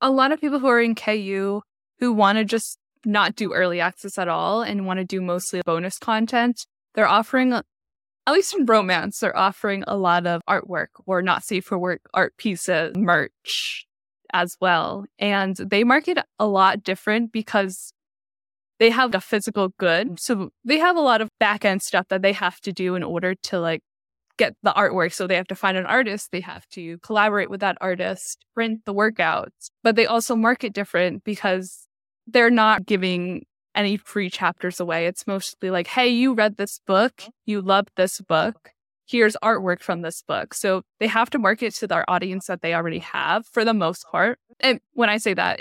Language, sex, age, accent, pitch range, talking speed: English, female, 10-29, American, 185-225 Hz, 195 wpm